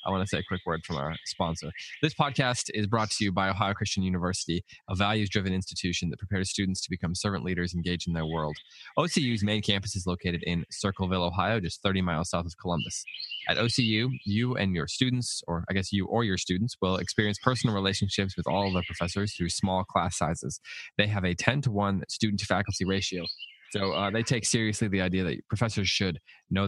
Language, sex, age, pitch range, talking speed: English, male, 20-39, 90-105 Hz, 210 wpm